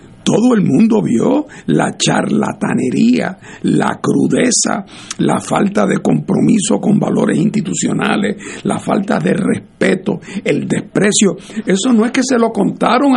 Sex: male